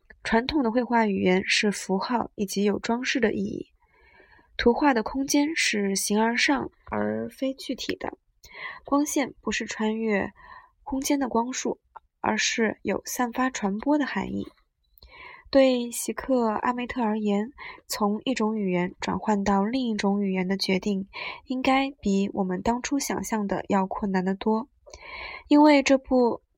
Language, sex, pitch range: Chinese, female, 200-265 Hz